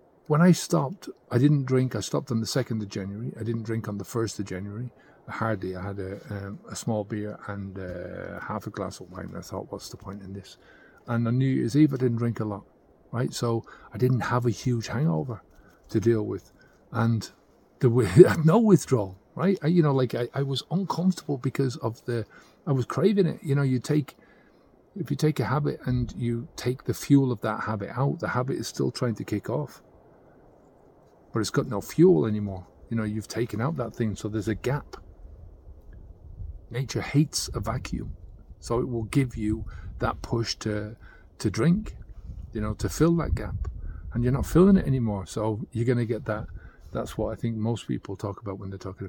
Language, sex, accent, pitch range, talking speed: English, male, British, 100-130 Hz, 205 wpm